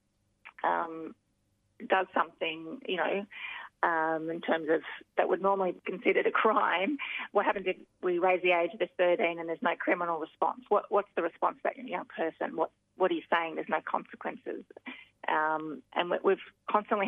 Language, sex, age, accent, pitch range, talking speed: English, female, 30-49, Australian, 165-210 Hz, 170 wpm